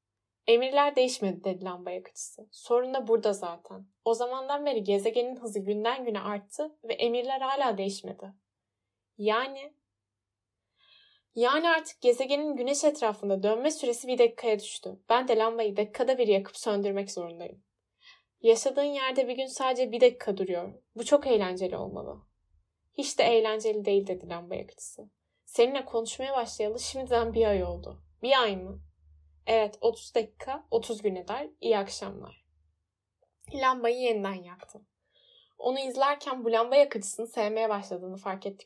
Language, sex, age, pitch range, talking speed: Turkish, female, 10-29, 195-255 Hz, 140 wpm